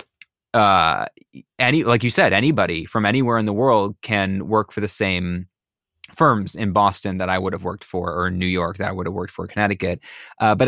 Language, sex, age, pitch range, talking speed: English, male, 20-39, 100-140 Hz, 215 wpm